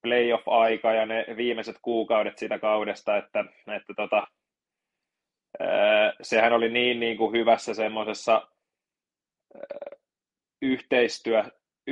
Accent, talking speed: native, 100 wpm